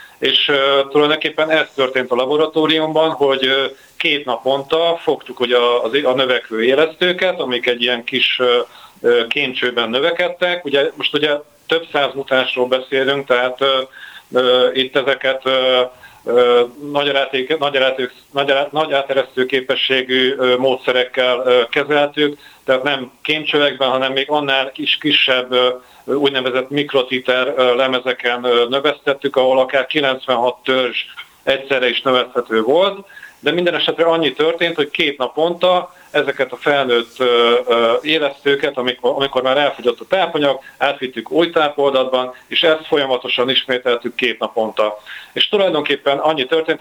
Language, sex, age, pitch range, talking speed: Hungarian, male, 50-69, 125-145 Hz, 120 wpm